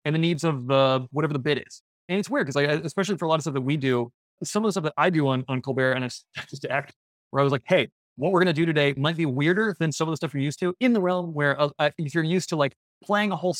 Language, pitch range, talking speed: English, 135-170 Hz, 320 wpm